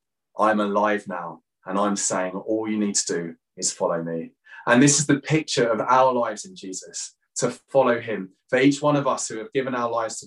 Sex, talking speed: male, 220 wpm